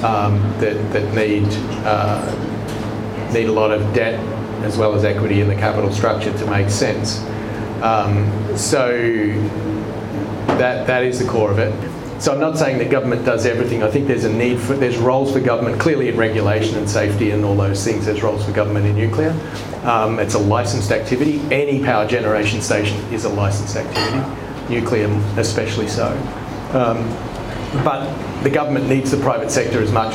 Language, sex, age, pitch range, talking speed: English, male, 40-59, 105-115 Hz, 175 wpm